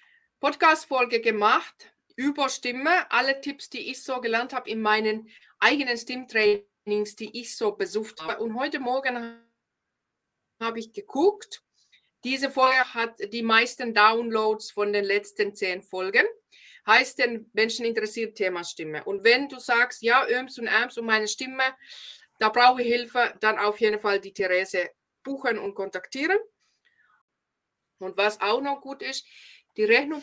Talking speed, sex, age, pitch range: 150 wpm, female, 20-39, 220-290 Hz